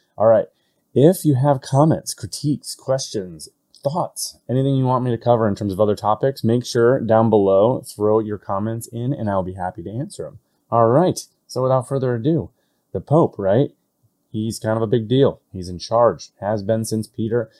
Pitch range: 100-130 Hz